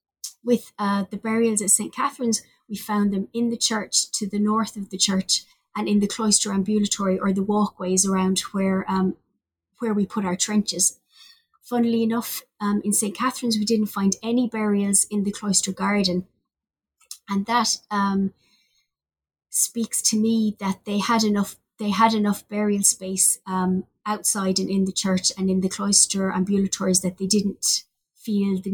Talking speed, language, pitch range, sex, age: 170 wpm, English, 190-210 Hz, female, 30-49